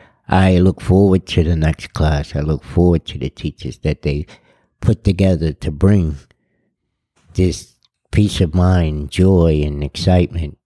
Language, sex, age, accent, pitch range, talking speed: English, male, 60-79, American, 80-95 Hz, 145 wpm